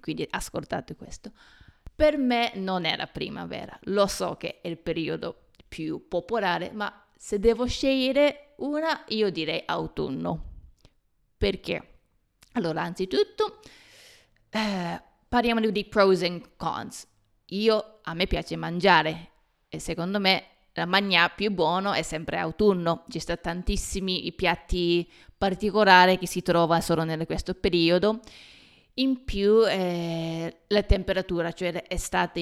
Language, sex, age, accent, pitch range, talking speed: Italian, female, 20-39, native, 170-215 Hz, 125 wpm